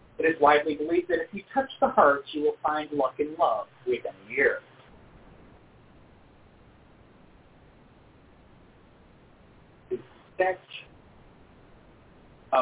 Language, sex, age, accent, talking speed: English, male, 40-59, American, 95 wpm